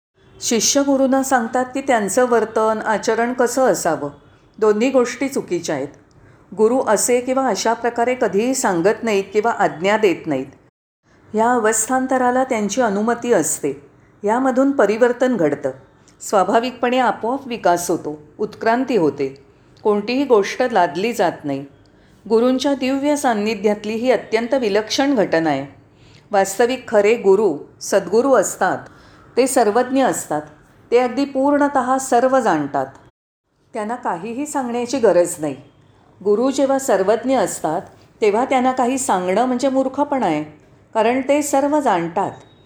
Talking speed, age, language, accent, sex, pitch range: 120 wpm, 40-59, Marathi, native, female, 185-255 Hz